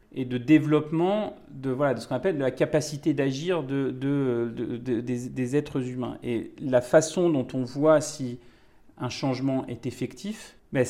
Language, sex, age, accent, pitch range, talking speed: French, male, 40-59, French, 125-160 Hz, 180 wpm